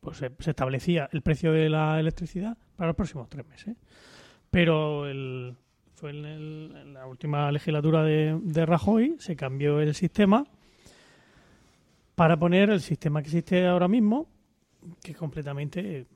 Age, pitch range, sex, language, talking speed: 30-49, 145-180 Hz, male, Spanish, 150 wpm